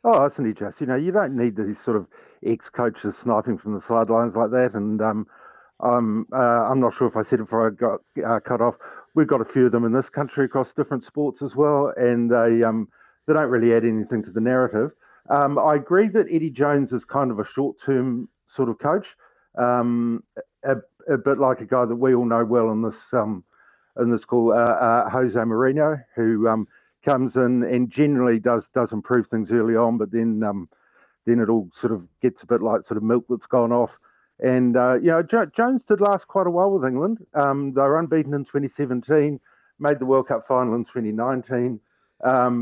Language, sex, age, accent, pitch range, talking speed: English, male, 50-69, Australian, 115-140 Hz, 215 wpm